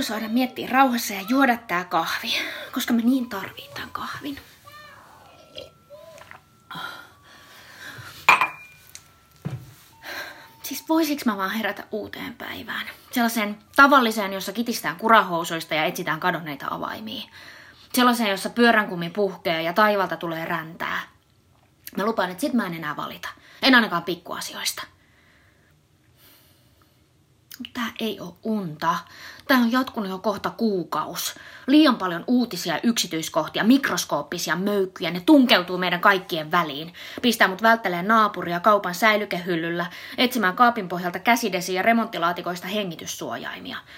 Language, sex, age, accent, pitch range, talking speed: Finnish, female, 20-39, native, 185-265 Hz, 110 wpm